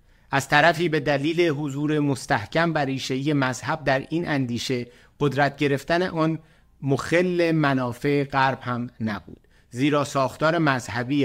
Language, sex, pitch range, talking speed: Persian, male, 130-160 Hz, 115 wpm